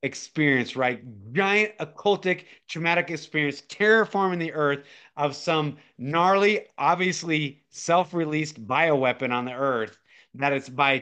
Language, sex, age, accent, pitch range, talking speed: English, male, 30-49, American, 135-170 Hz, 115 wpm